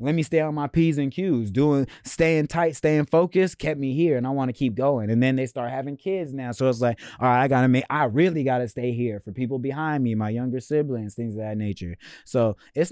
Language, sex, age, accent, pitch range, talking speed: English, male, 20-39, American, 115-150 Hz, 255 wpm